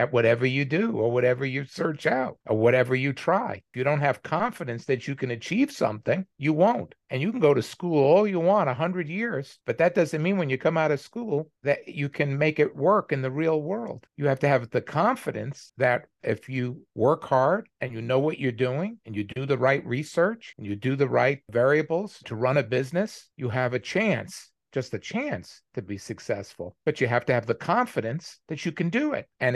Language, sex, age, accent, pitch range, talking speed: English, male, 50-69, American, 125-165 Hz, 225 wpm